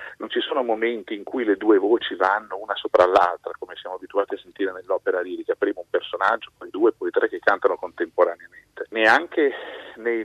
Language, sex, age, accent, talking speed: Italian, male, 40-59, native, 185 wpm